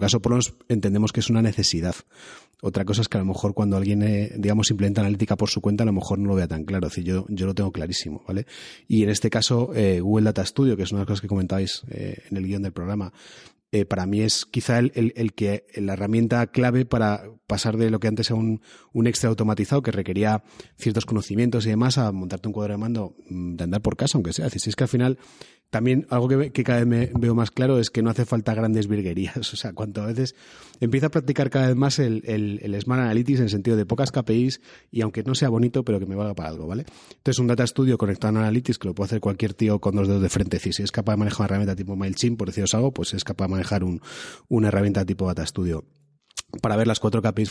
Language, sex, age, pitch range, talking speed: Spanish, male, 30-49, 100-115 Hz, 260 wpm